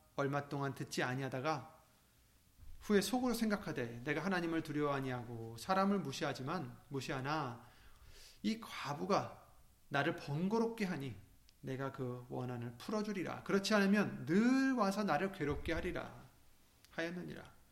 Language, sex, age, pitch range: Korean, male, 30-49, 125-180 Hz